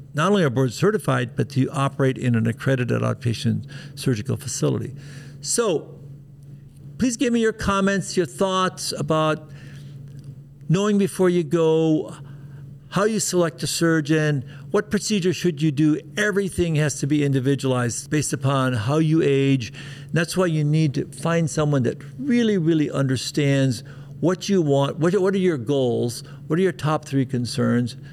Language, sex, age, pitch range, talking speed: English, male, 60-79, 135-165 Hz, 155 wpm